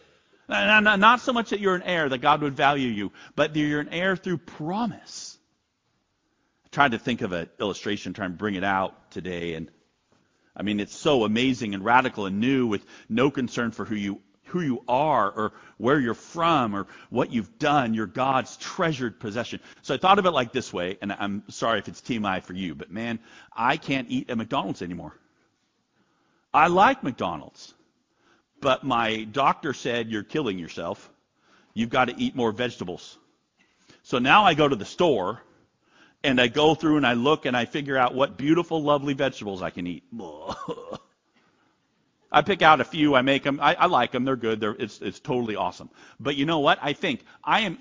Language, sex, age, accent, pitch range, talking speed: English, male, 50-69, American, 115-165 Hz, 195 wpm